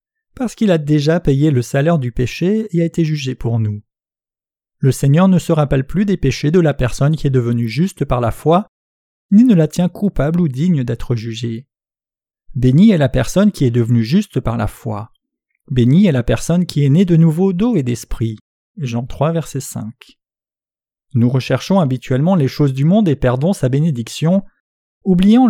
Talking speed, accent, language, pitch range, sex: 190 wpm, French, French, 125-180 Hz, male